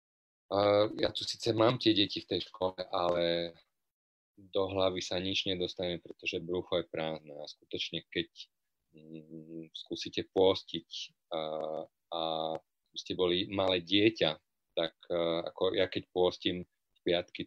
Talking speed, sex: 125 wpm, male